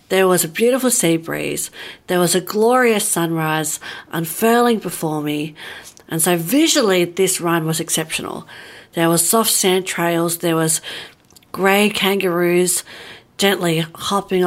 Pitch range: 165-200 Hz